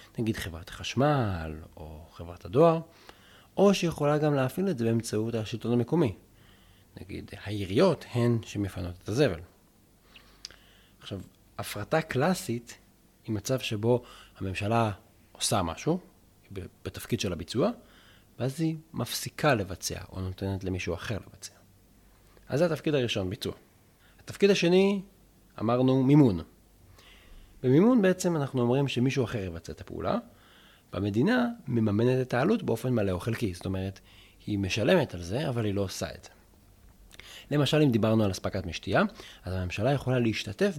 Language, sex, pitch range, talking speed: Hebrew, male, 95-130 Hz, 130 wpm